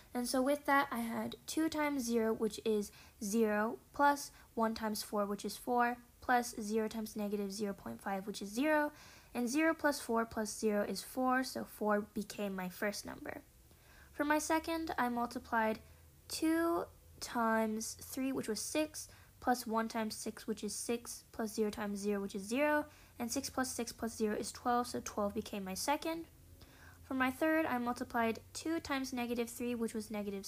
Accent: American